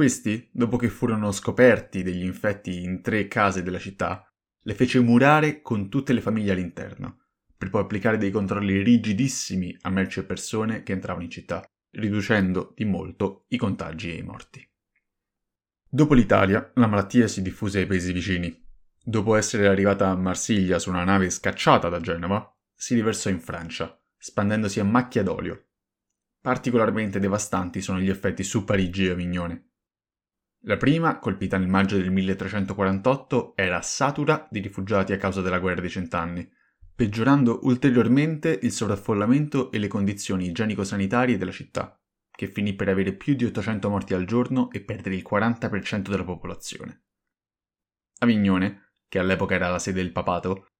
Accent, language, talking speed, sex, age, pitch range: native, Italian, 155 wpm, male, 20-39, 95-115 Hz